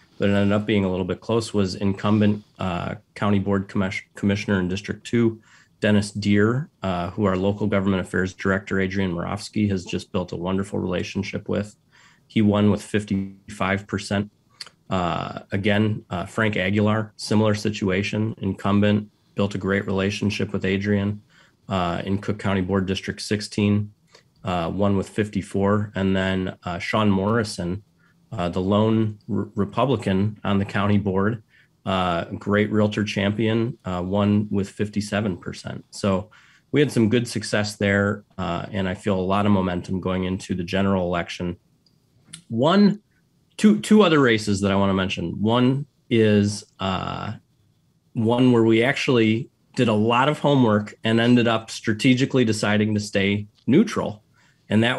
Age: 30-49